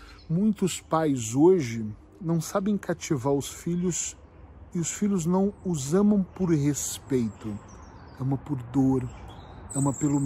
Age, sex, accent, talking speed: 40-59, male, Brazilian, 125 wpm